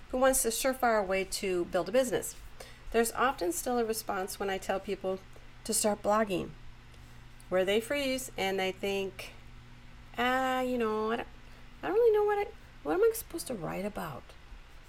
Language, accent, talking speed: English, American, 180 wpm